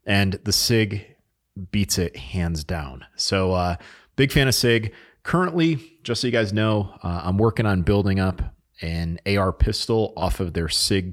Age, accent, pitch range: 30-49, American, 85-110 Hz